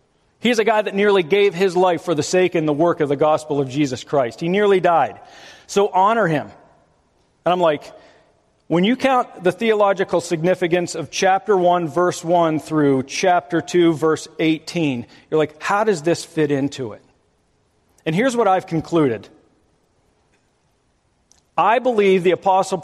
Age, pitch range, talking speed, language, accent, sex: 50-69, 150-195 Hz, 165 wpm, English, American, male